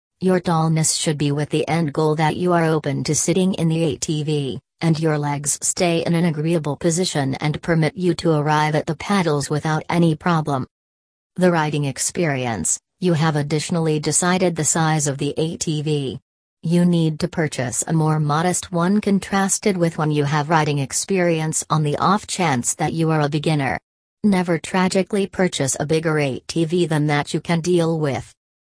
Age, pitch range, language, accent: 40-59, 145-170 Hz, English, American